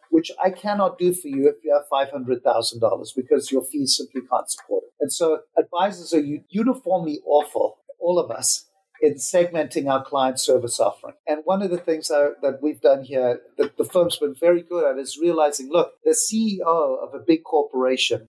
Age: 50-69